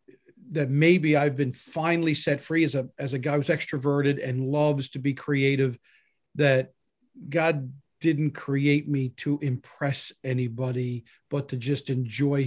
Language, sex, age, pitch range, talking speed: English, male, 40-59, 135-170 Hz, 150 wpm